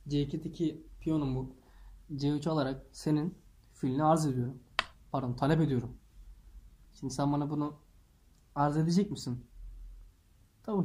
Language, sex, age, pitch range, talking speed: English, male, 20-39, 110-180 Hz, 110 wpm